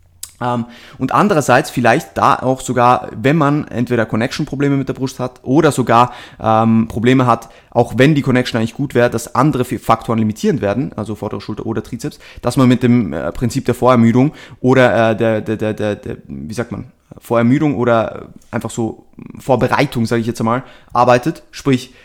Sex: male